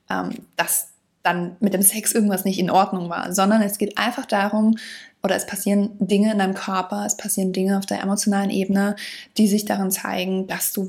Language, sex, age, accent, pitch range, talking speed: German, female, 20-39, German, 195-220 Hz, 195 wpm